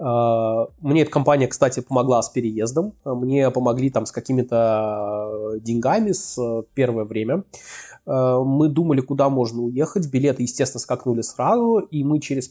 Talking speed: 135 wpm